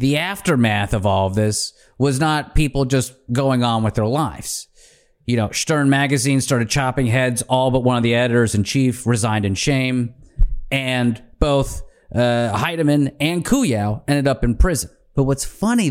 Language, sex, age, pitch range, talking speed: English, male, 30-49, 130-195 Hz, 165 wpm